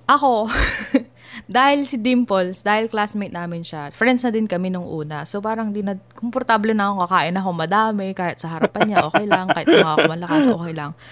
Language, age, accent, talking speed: Filipino, 20-39, native, 190 wpm